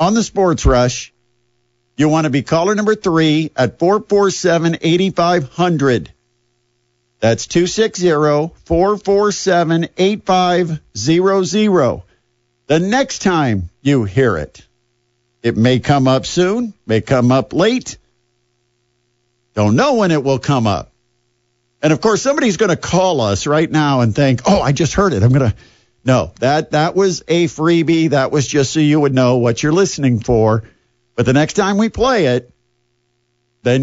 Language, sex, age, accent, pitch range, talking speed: English, male, 50-69, American, 120-165 Hz, 145 wpm